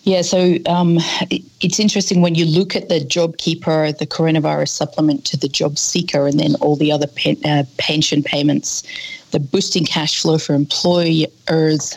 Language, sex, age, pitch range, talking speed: English, female, 30-49, 150-170 Hz, 160 wpm